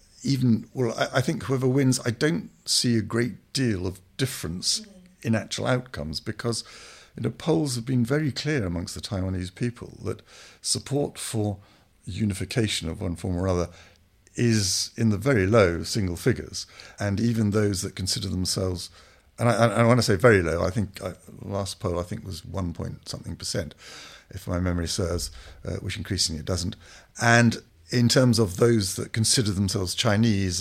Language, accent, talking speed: English, British, 175 wpm